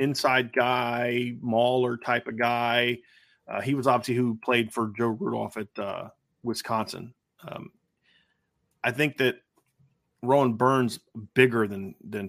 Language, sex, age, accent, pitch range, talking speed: English, male, 30-49, American, 110-130 Hz, 130 wpm